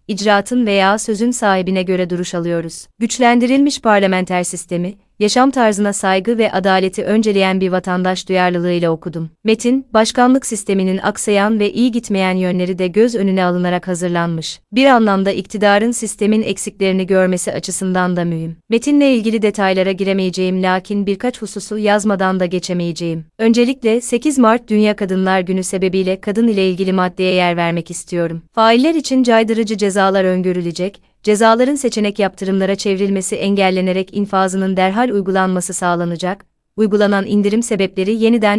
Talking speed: 130 wpm